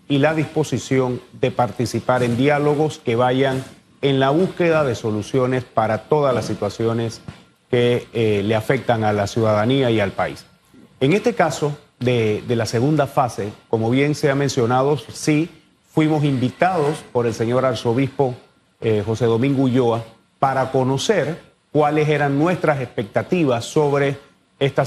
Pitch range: 125-160 Hz